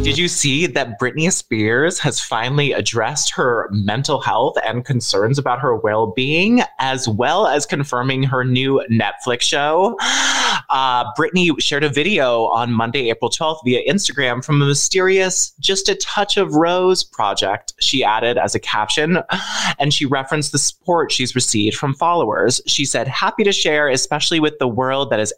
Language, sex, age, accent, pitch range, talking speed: English, male, 20-39, American, 120-165 Hz, 165 wpm